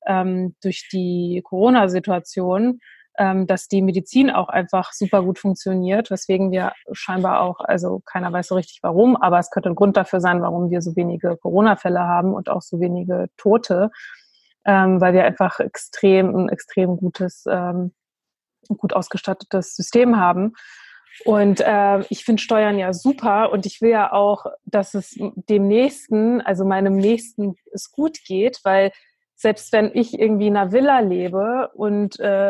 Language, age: German, 20-39